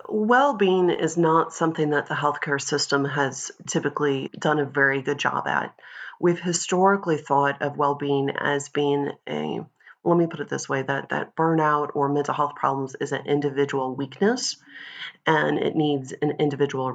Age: 30-49